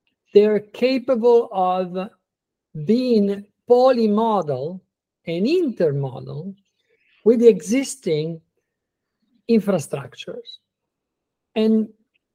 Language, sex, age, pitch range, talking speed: English, male, 50-69, 170-225 Hz, 60 wpm